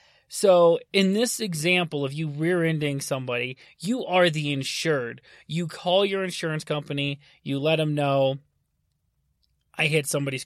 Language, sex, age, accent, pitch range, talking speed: English, male, 30-49, American, 140-180 Hz, 140 wpm